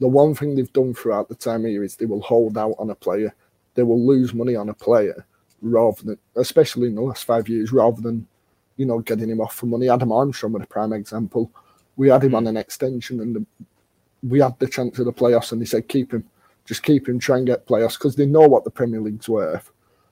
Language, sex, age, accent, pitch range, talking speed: English, male, 30-49, British, 110-130 Hz, 245 wpm